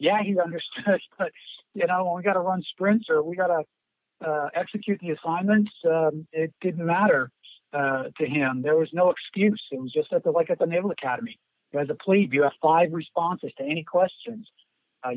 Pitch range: 155-200 Hz